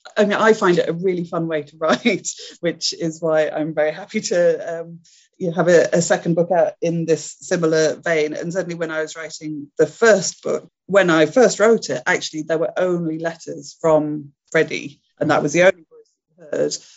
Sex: female